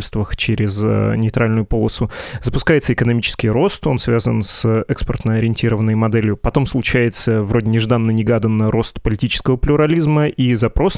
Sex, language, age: male, Russian, 20-39